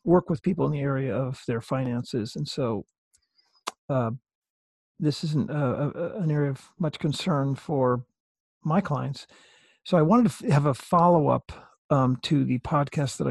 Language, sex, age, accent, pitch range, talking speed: English, male, 50-69, American, 130-165 Hz, 150 wpm